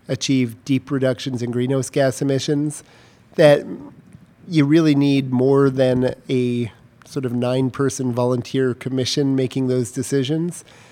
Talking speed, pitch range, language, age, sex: 120 wpm, 125-145 Hz, English, 40-59, male